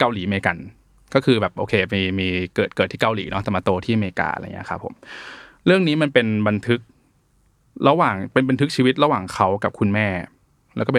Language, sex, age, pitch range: Thai, male, 20-39, 100-125 Hz